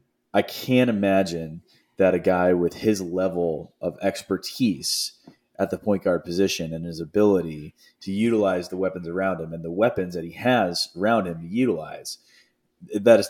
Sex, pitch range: male, 90-105 Hz